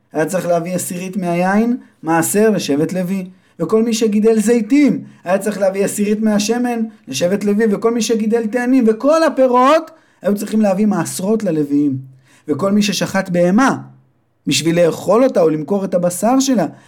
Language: Hebrew